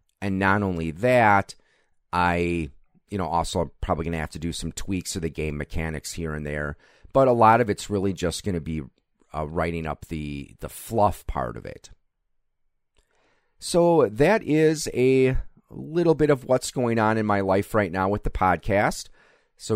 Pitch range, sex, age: 85-120 Hz, male, 30-49